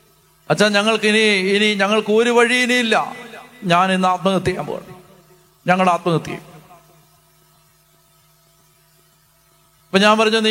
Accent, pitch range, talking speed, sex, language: native, 175-210 Hz, 105 wpm, male, Malayalam